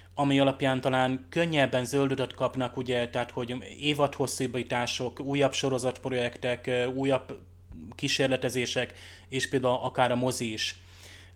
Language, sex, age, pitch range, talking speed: Hungarian, male, 20-39, 120-135 Hz, 105 wpm